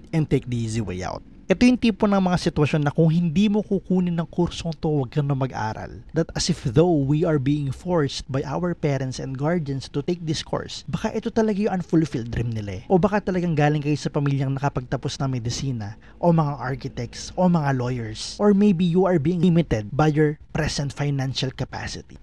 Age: 20-39